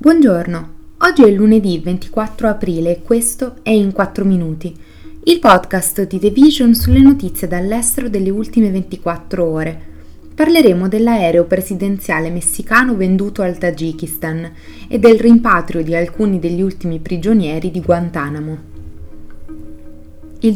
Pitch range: 170-210 Hz